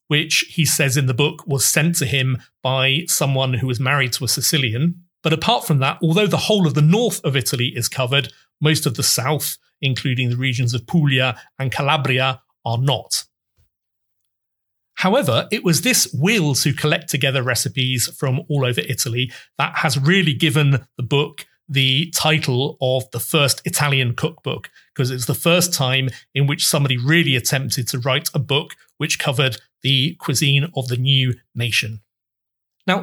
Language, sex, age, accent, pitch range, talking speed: English, male, 40-59, British, 125-155 Hz, 170 wpm